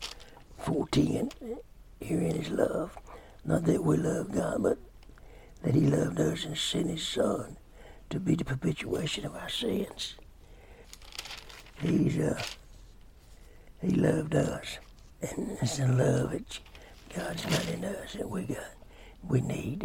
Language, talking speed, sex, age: English, 135 wpm, male, 60-79